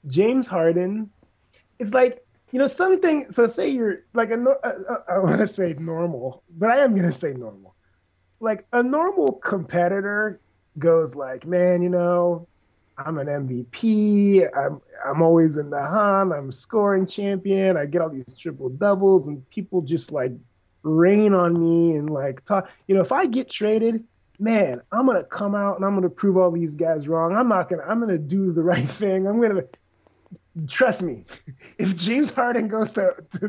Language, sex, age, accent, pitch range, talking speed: English, male, 20-39, American, 165-220 Hz, 190 wpm